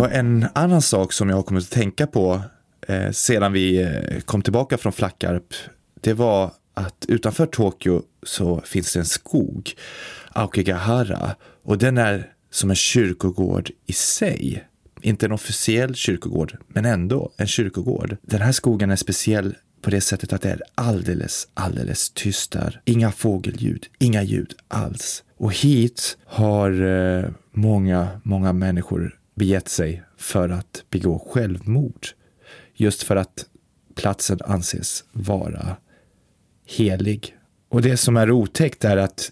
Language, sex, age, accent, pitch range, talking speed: Swedish, male, 20-39, native, 95-115 Hz, 140 wpm